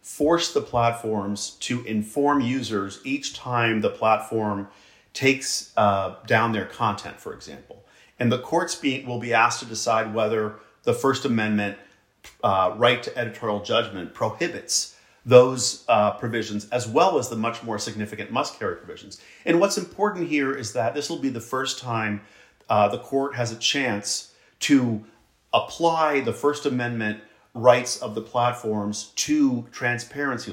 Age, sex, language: 40-59, male, English